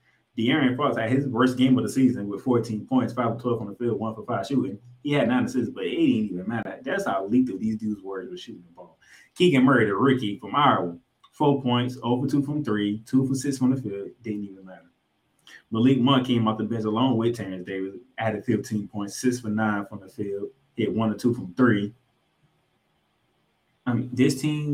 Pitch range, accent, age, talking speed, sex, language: 105-130 Hz, American, 20-39, 220 wpm, male, English